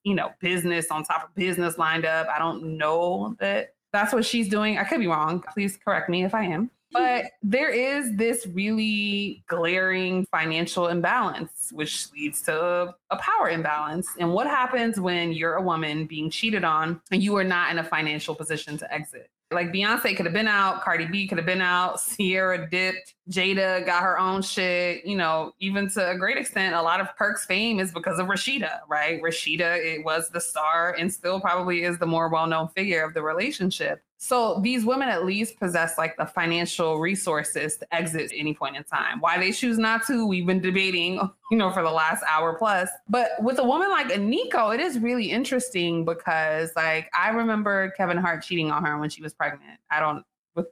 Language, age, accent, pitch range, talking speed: English, 20-39, American, 165-210 Hz, 200 wpm